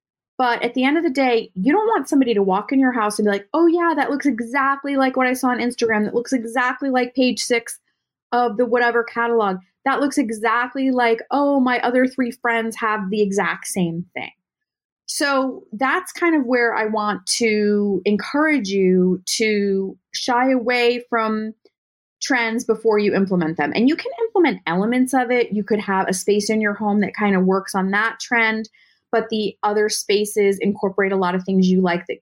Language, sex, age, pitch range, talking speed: English, female, 30-49, 195-255 Hz, 200 wpm